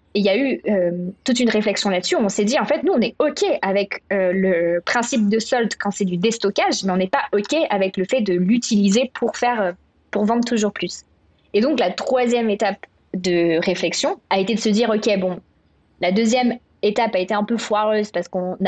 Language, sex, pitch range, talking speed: French, female, 185-230 Hz, 220 wpm